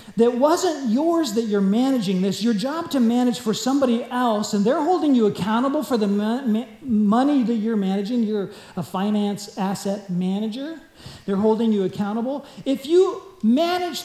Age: 40-59